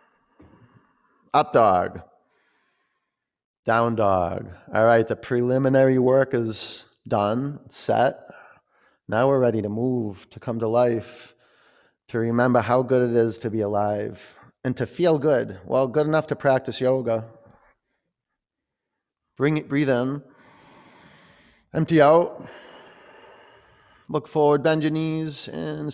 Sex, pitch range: male, 115-145 Hz